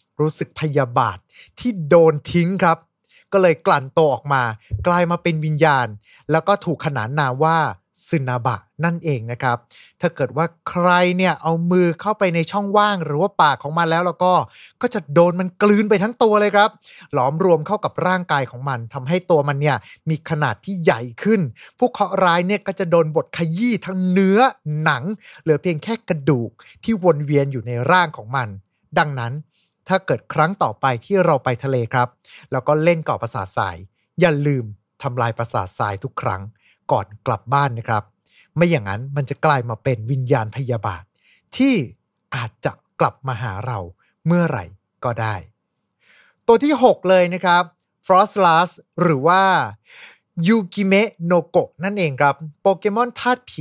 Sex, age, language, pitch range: male, 20-39, Thai, 130-185 Hz